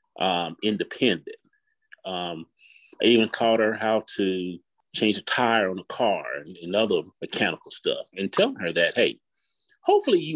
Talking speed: 155 wpm